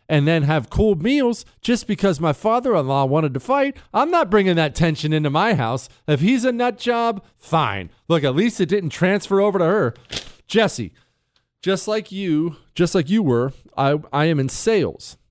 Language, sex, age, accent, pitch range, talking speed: English, male, 40-59, American, 115-155 Hz, 190 wpm